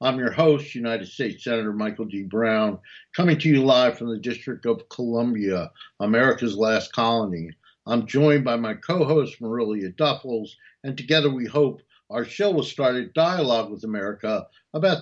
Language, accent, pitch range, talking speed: English, American, 115-150 Hz, 165 wpm